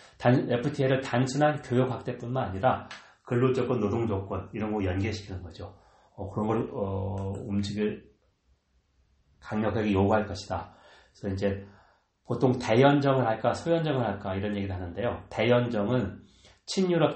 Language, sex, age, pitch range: Korean, male, 40-59, 100-130 Hz